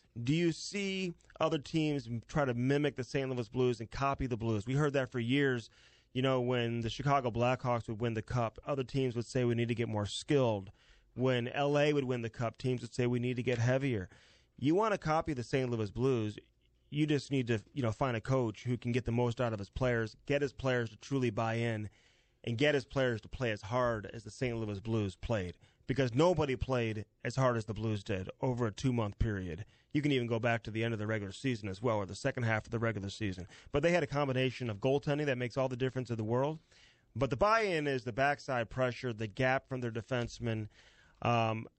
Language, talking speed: English, 235 wpm